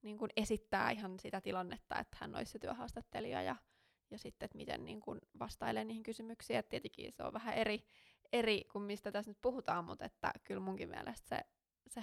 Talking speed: 200 wpm